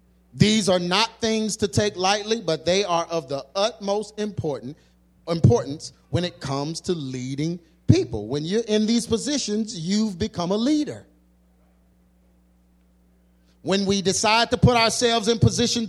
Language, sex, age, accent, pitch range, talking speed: English, male, 30-49, American, 160-230 Hz, 140 wpm